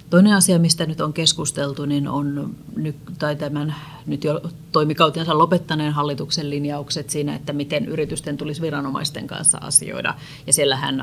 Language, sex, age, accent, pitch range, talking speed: Finnish, female, 30-49, native, 145-165 Hz, 145 wpm